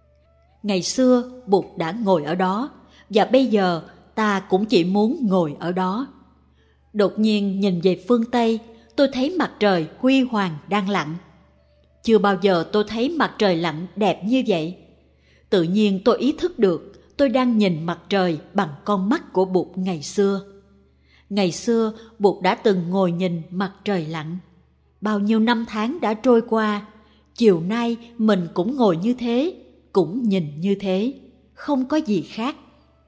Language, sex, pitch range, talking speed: Vietnamese, female, 180-235 Hz, 165 wpm